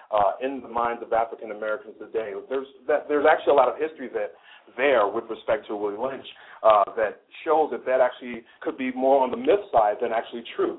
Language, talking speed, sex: English, 215 wpm, male